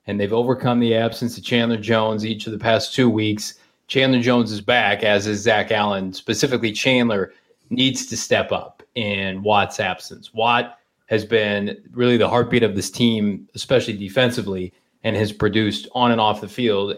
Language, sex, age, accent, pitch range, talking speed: English, male, 30-49, American, 105-125 Hz, 175 wpm